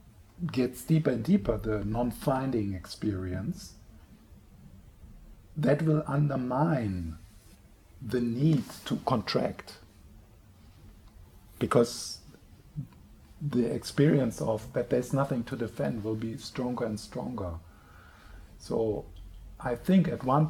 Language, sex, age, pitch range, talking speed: English, male, 50-69, 100-145 Hz, 95 wpm